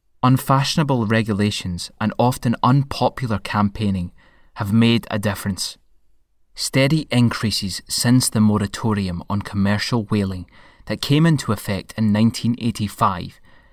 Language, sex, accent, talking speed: English, male, British, 105 wpm